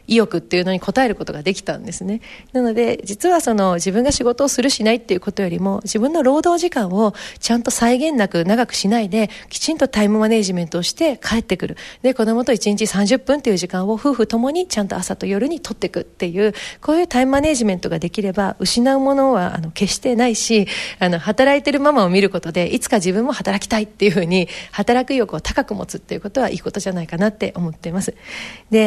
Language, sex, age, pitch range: Japanese, female, 40-59, 195-265 Hz